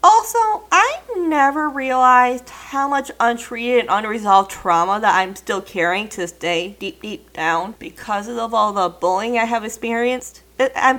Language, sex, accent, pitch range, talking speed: English, female, American, 195-250 Hz, 160 wpm